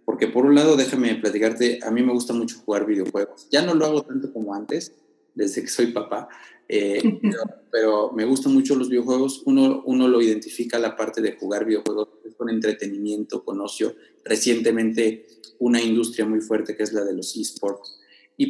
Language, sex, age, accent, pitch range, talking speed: Spanish, male, 30-49, Mexican, 110-140 Hz, 180 wpm